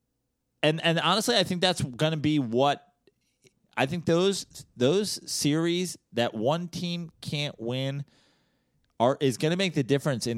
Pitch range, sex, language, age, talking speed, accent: 125-170 Hz, male, English, 30-49, 160 wpm, American